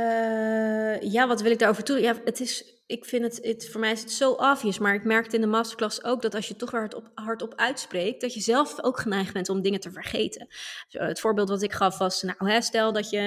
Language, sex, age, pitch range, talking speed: Dutch, female, 20-39, 190-230 Hz, 255 wpm